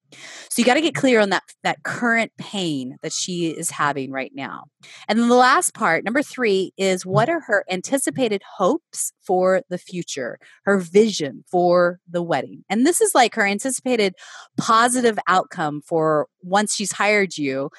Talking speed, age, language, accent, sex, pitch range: 170 wpm, 30-49, English, American, female, 170-240 Hz